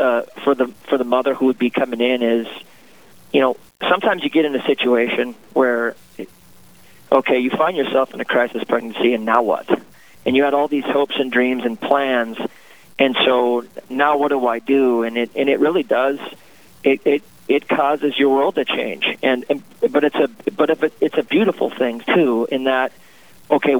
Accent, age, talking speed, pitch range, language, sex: American, 40-59, 200 wpm, 120-135 Hz, English, male